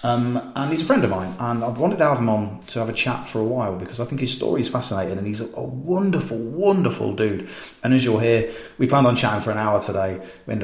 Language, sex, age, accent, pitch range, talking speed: English, male, 30-49, British, 100-130 Hz, 275 wpm